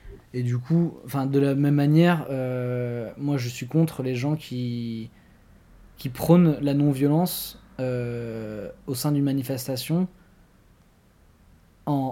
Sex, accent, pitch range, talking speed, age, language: male, French, 120-140 Hz, 125 wpm, 20-39, French